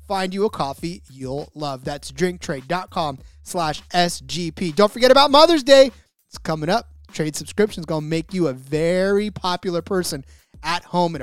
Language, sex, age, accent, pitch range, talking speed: English, male, 30-49, American, 155-215 Hz, 170 wpm